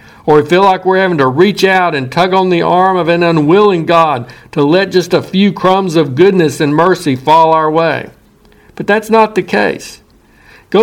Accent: American